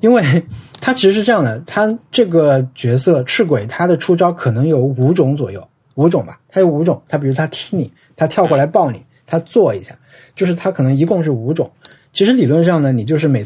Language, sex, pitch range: Chinese, male, 130-170 Hz